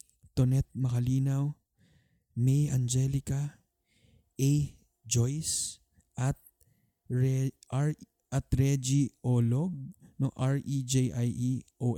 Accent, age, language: native, 20-39, Filipino